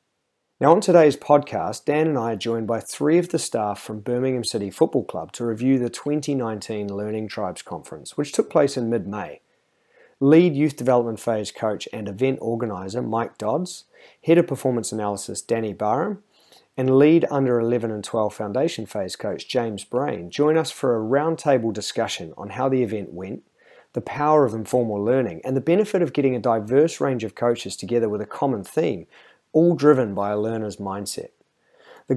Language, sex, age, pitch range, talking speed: English, male, 30-49, 105-140 Hz, 180 wpm